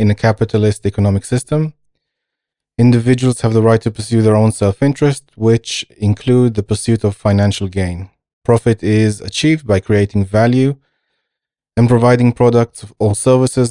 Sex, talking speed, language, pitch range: male, 140 wpm, English, 105-125 Hz